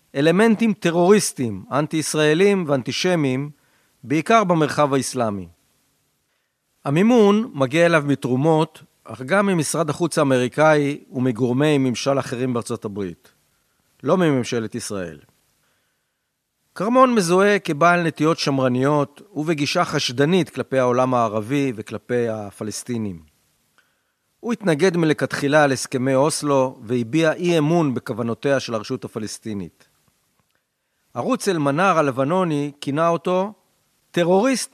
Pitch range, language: 130-180 Hz, Hebrew